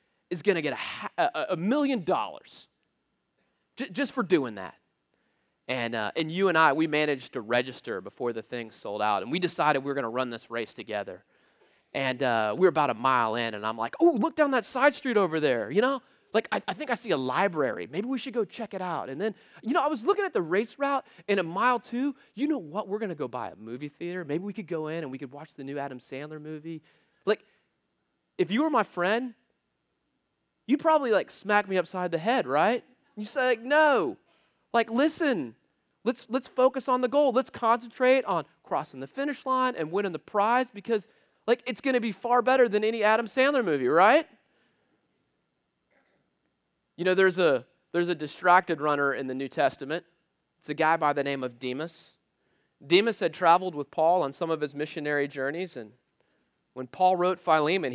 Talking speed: 210 wpm